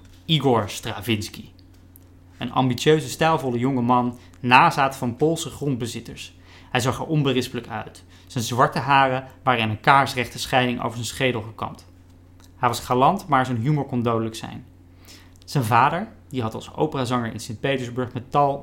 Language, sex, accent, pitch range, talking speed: Dutch, male, Dutch, 90-130 Hz, 150 wpm